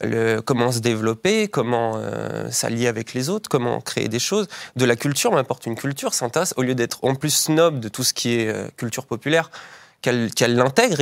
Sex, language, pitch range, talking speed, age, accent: male, French, 115-135 Hz, 205 wpm, 20-39, French